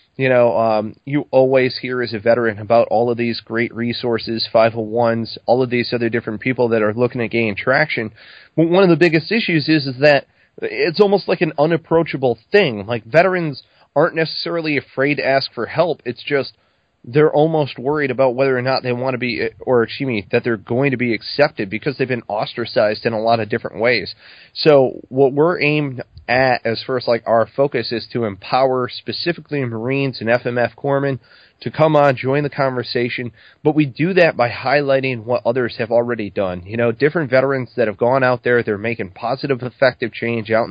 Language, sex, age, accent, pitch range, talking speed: English, male, 30-49, American, 115-140 Hz, 200 wpm